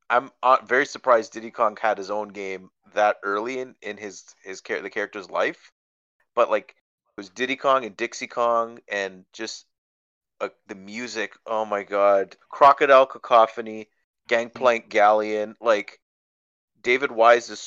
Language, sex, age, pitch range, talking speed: English, male, 30-49, 95-120 Hz, 145 wpm